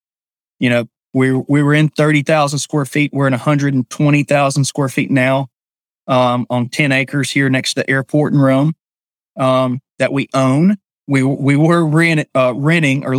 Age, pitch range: 30-49, 130-150 Hz